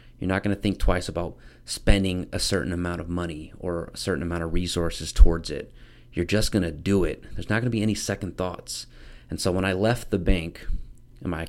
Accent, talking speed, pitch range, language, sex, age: American, 225 wpm, 80-95 Hz, English, male, 30-49